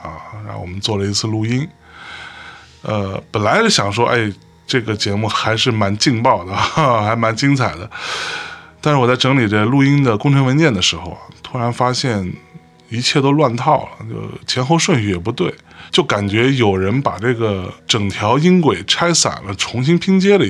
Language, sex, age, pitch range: Chinese, male, 20-39, 100-140 Hz